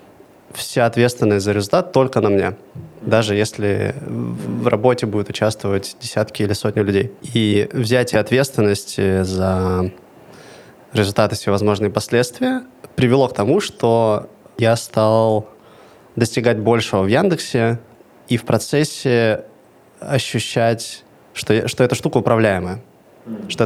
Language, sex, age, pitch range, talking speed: Russian, male, 20-39, 105-125 Hz, 110 wpm